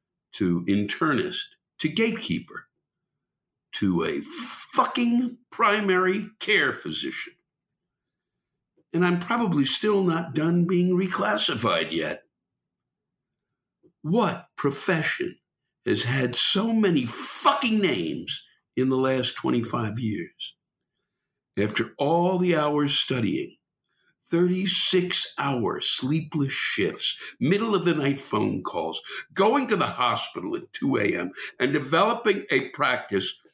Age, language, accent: 60-79, English, American